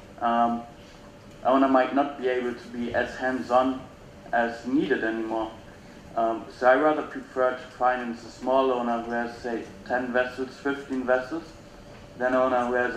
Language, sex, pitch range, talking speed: English, male, 115-130 Hz, 160 wpm